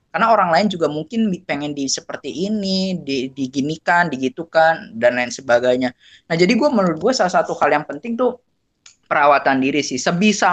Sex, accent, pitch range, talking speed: female, native, 130-175 Hz, 170 wpm